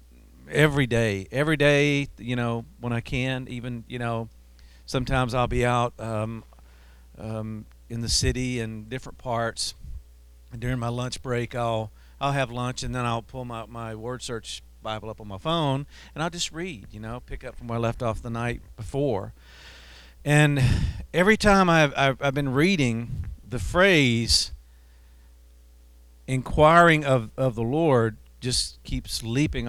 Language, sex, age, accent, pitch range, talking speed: English, male, 50-69, American, 95-130 Hz, 160 wpm